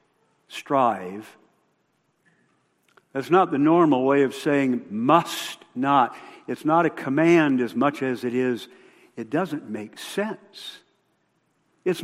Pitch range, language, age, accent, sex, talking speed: 135-215 Hz, English, 60-79, American, male, 120 wpm